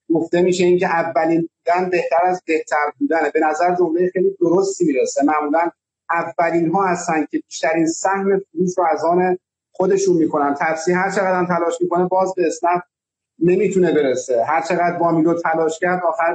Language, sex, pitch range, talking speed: Persian, male, 165-190 Hz, 170 wpm